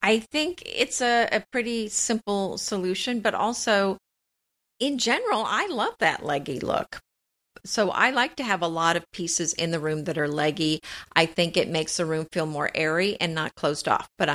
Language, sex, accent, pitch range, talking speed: English, female, American, 165-205 Hz, 190 wpm